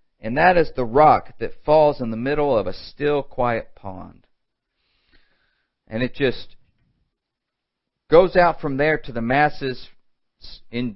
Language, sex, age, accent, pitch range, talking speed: English, male, 50-69, American, 125-170 Hz, 140 wpm